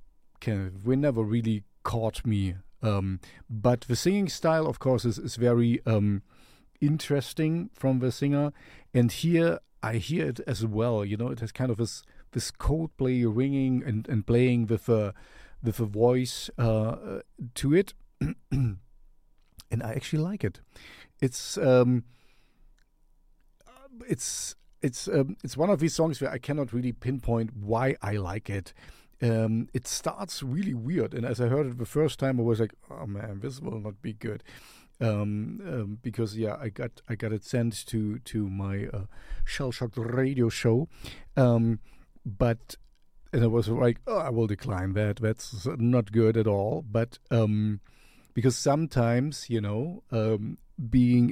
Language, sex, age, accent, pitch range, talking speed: English, male, 50-69, German, 110-130 Hz, 160 wpm